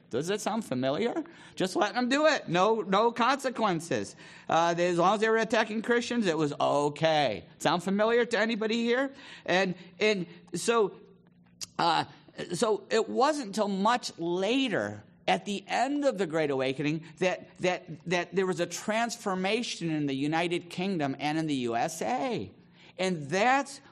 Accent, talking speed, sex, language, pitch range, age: American, 160 wpm, male, English, 135-205 Hz, 50-69